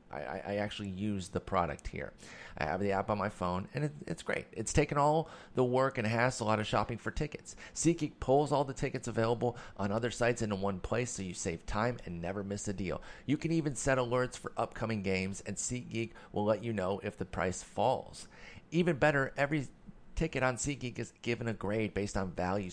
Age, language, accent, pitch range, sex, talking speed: 30-49, English, American, 100-130 Hz, male, 210 wpm